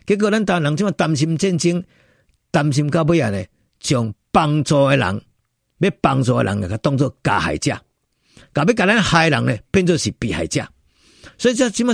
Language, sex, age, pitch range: Chinese, male, 50-69, 120-185 Hz